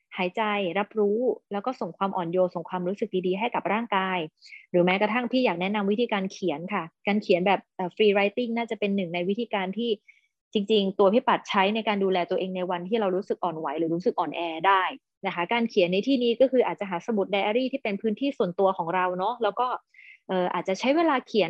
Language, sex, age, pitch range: Thai, female, 20-39, 185-235 Hz